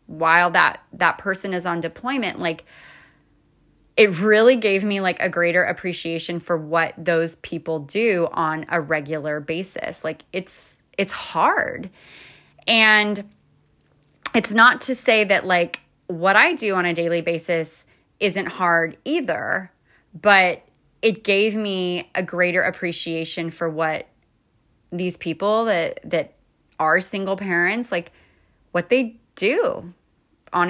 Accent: American